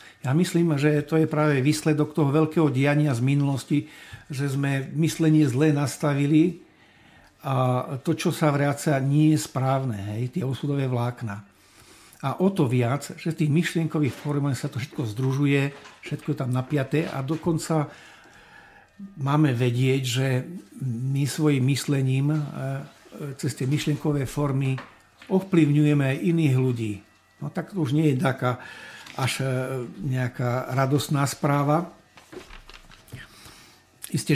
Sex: male